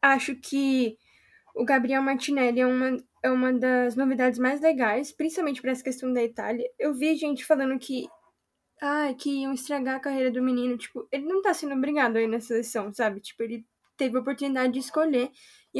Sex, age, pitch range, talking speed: female, 10-29, 250-295 Hz, 190 wpm